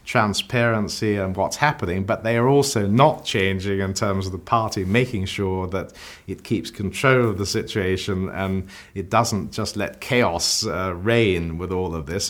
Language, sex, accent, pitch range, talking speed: English, male, British, 95-120 Hz, 175 wpm